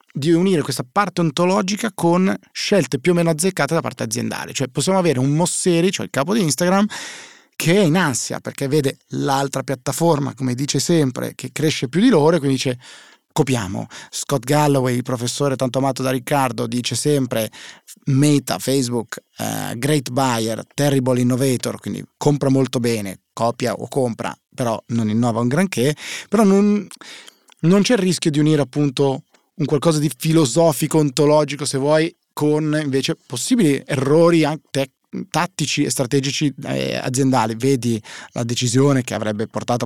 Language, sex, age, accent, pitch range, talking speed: Italian, male, 30-49, native, 120-155 Hz, 155 wpm